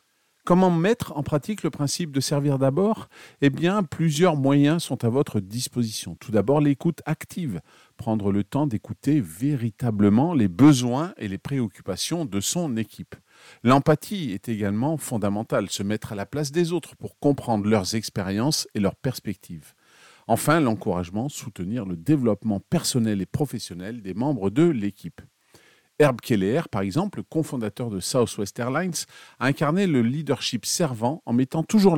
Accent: French